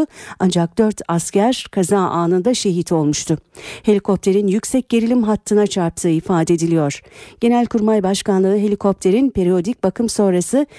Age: 50-69